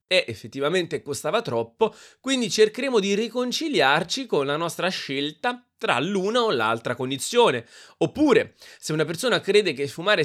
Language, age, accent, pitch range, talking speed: Italian, 20-39, native, 140-220 Hz, 140 wpm